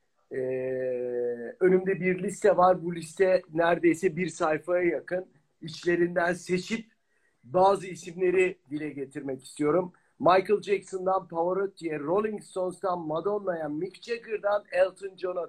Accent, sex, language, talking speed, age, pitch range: native, male, Turkish, 110 wpm, 50-69, 165-200 Hz